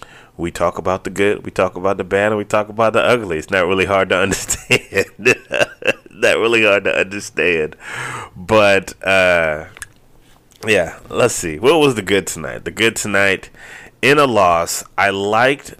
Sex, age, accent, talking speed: male, 30-49, American, 170 wpm